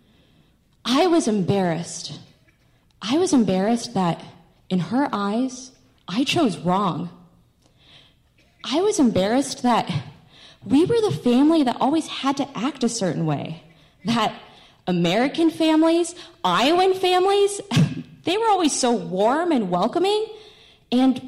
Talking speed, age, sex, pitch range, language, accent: 120 wpm, 20-39, female, 175-280 Hz, English, American